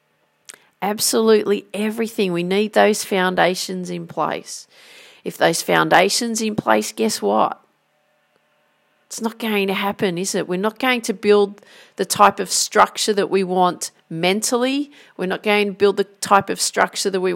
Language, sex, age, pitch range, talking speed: English, female, 40-59, 190-240 Hz, 160 wpm